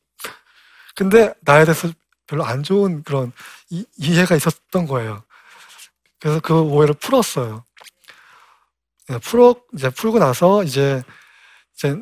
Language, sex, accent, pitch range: Korean, male, native, 145-195 Hz